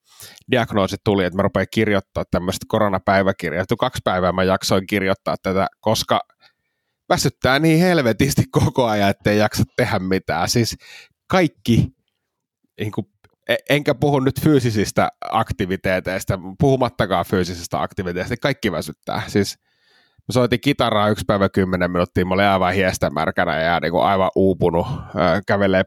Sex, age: male, 30-49